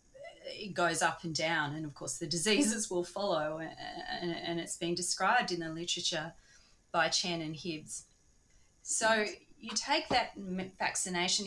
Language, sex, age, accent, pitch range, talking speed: English, female, 30-49, Australian, 155-190 Hz, 145 wpm